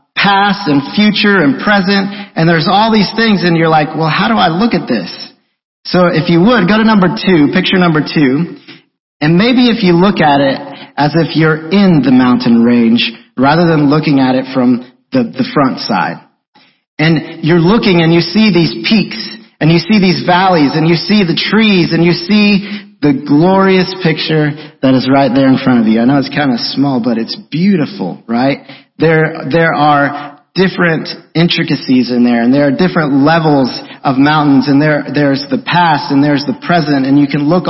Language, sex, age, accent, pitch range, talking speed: English, male, 40-59, American, 140-180 Hz, 200 wpm